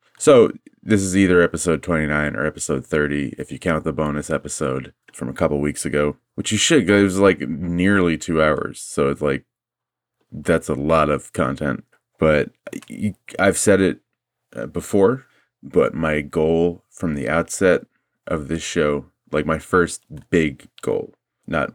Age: 30-49